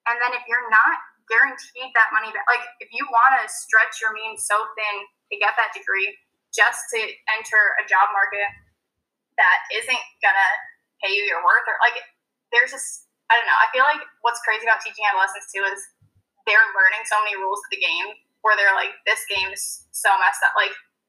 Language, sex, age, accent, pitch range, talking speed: English, female, 10-29, American, 205-280 Hz, 200 wpm